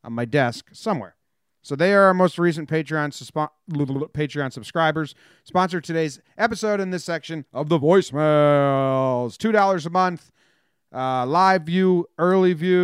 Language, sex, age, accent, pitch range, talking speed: English, male, 30-49, American, 140-180 Hz, 150 wpm